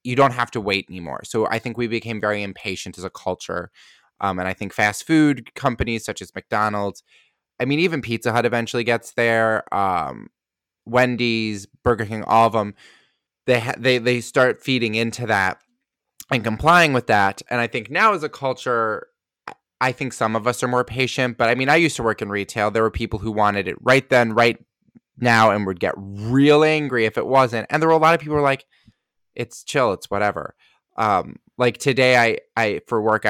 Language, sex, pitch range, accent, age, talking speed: English, male, 105-125 Hz, American, 20-39, 210 wpm